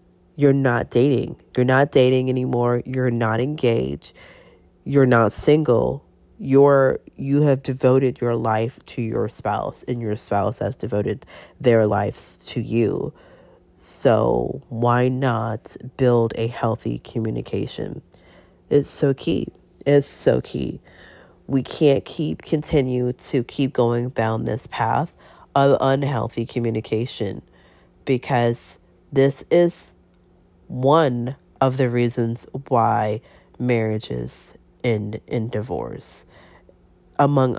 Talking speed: 115 wpm